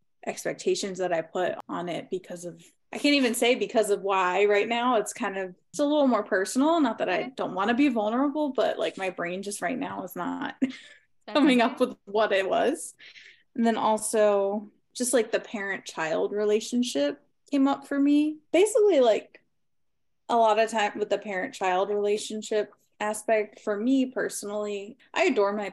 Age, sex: 20-39, female